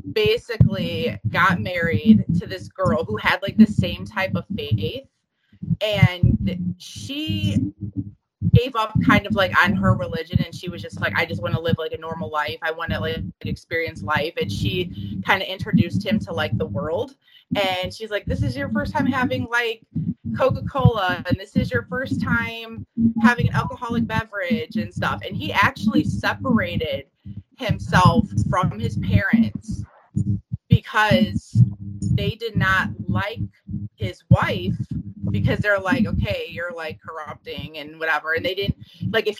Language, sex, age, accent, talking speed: English, female, 20-39, American, 165 wpm